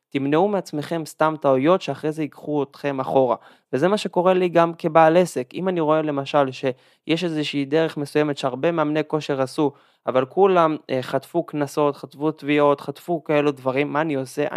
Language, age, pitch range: Hebrew, 20-39, 140-170 Hz